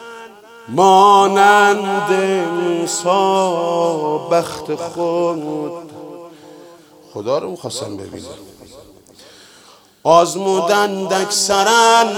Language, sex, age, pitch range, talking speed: Persian, male, 50-69, 150-190 Hz, 50 wpm